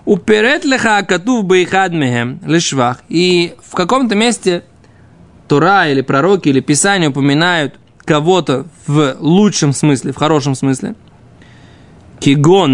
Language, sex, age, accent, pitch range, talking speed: Russian, male, 20-39, native, 145-195 Hz, 85 wpm